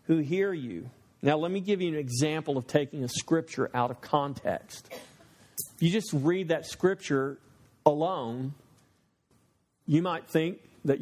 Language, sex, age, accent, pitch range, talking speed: English, male, 50-69, American, 135-200 Hz, 150 wpm